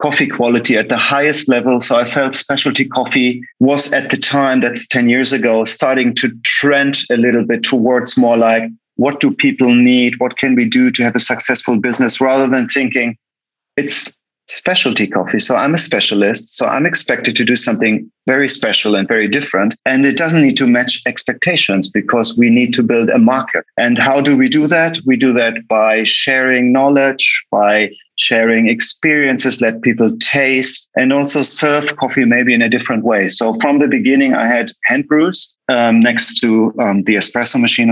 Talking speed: 185 wpm